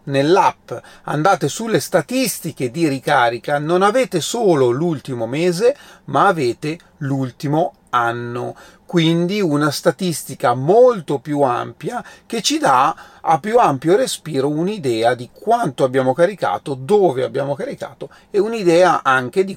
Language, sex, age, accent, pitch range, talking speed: Italian, male, 40-59, native, 135-185 Hz, 125 wpm